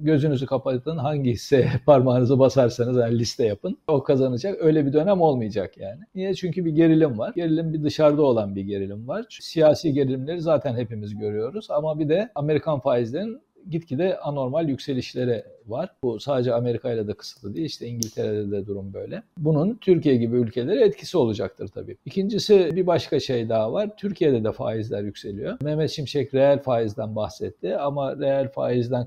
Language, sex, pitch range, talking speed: Turkish, male, 120-160 Hz, 165 wpm